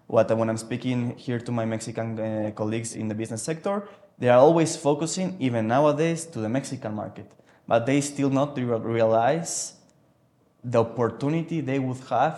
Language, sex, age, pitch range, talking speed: English, male, 20-39, 115-145 Hz, 160 wpm